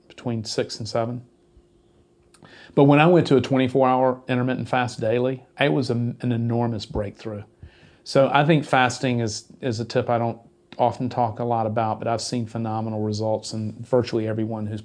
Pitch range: 115-130 Hz